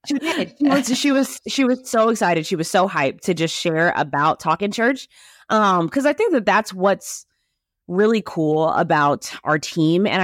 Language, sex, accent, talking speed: English, female, American, 180 wpm